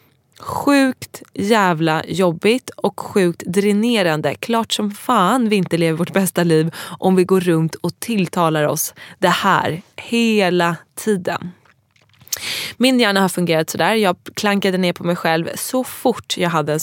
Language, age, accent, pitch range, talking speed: English, 20-39, Swedish, 165-205 Hz, 155 wpm